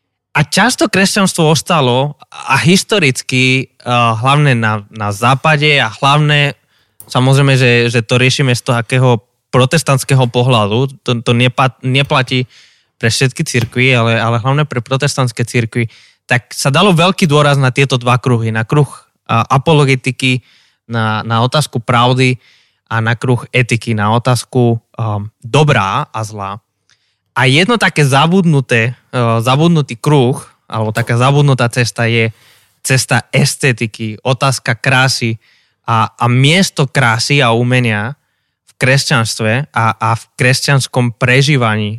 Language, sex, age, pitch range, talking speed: Slovak, male, 20-39, 115-140 Hz, 125 wpm